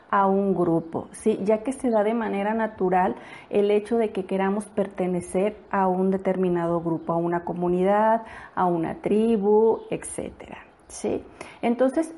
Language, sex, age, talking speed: Spanish, female, 40-59, 140 wpm